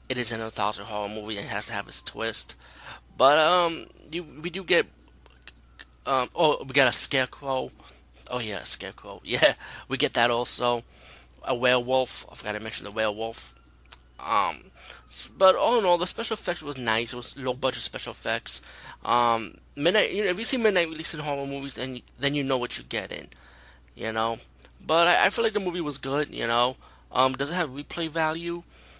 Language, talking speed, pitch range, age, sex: English, 205 wpm, 105-140 Hz, 20-39, male